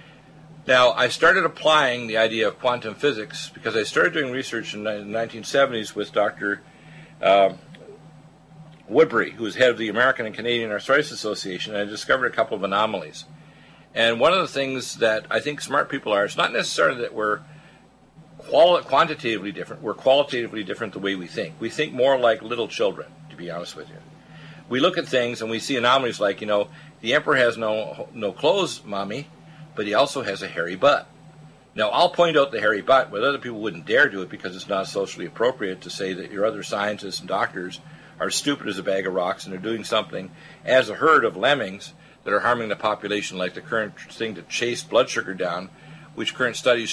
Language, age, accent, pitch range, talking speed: English, 50-69, American, 105-155 Hz, 205 wpm